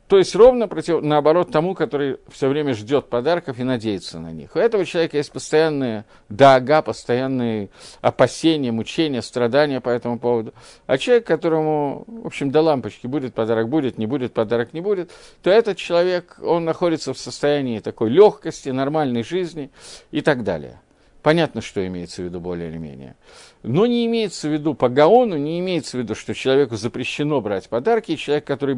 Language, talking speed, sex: Russian, 175 wpm, male